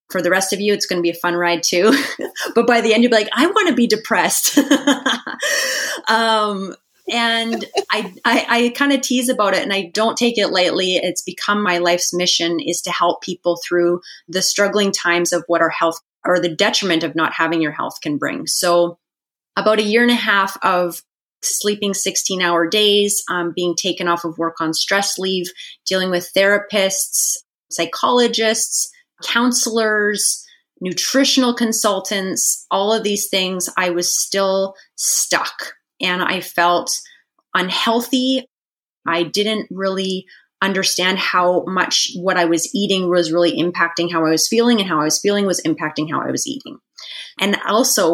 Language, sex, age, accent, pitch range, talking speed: English, female, 30-49, American, 175-225 Hz, 170 wpm